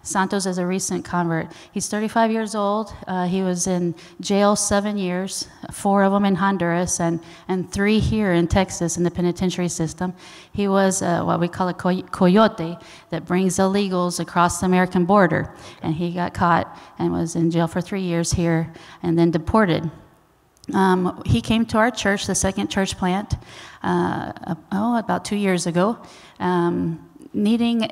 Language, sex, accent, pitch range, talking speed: English, female, American, 175-200 Hz, 170 wpm